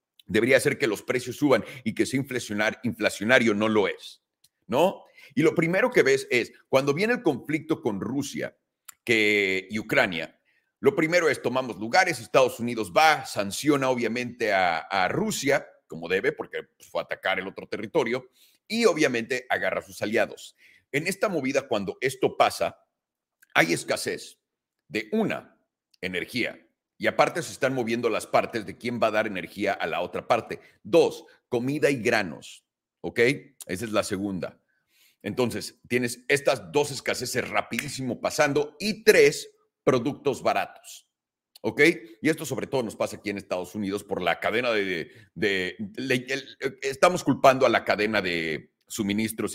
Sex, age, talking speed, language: male, 40-59, 160 wpm, Spanish